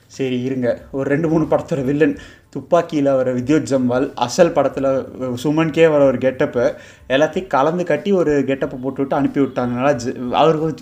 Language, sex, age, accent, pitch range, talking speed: Tamil, male, 20-39, native, 130-165 Hz, 140 wpm